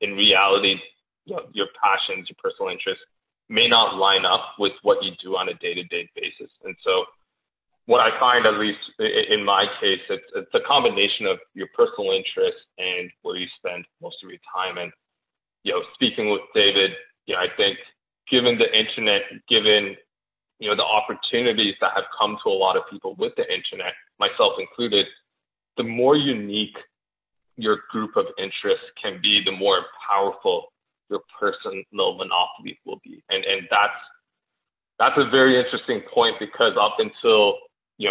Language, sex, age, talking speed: English, male, 20-39, 170 wpm